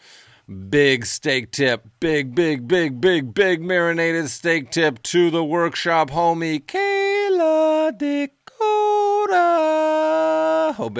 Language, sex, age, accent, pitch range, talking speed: English, male, 40-59, American, 105-165 Hz, 105 wpm